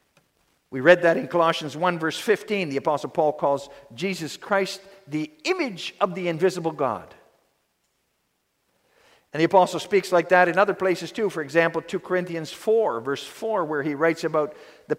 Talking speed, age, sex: 170 wpm, 50-69, male